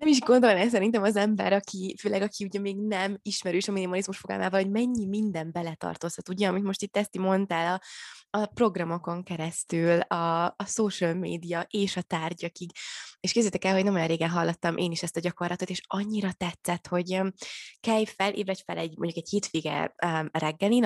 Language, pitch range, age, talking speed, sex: Hungarian, 170-205 Hz, 20-39, 175 wpm, female